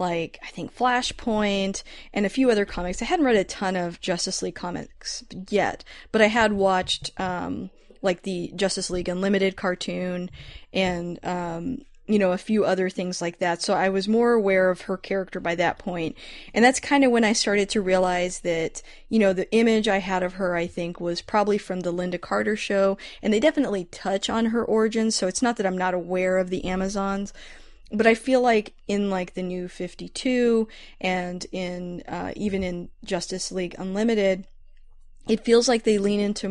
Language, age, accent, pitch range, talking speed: English, 20-39, American, 180-215 Hz, 195 wpm